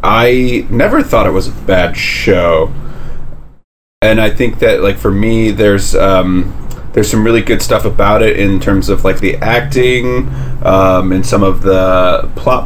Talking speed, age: 170 wpm, 30-49